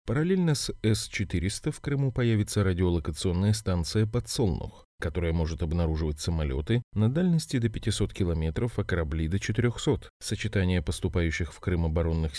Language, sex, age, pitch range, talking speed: Russian, male, 30-49, 85-115 Hz, 135 wpm